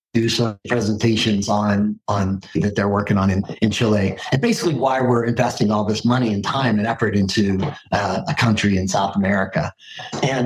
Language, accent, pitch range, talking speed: English, American, 115-145 Hz, 185 wpm